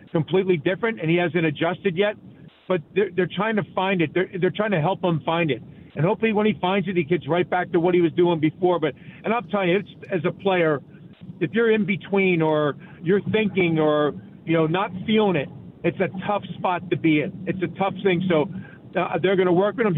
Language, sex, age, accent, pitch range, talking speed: English, male, 50-69, American, 165-195 Hz, 240 wpm